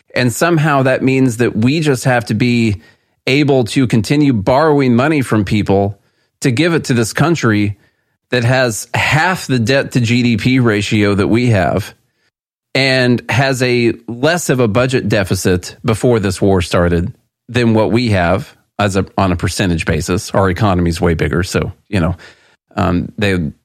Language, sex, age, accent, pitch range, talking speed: English, male, 40-59, American, 100-140 Hz, 165 wpm